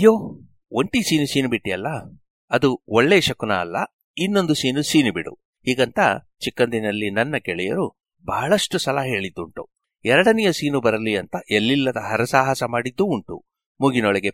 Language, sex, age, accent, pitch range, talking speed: Kannada, male, 60-79, native, 110-170 Hz, 120 wpm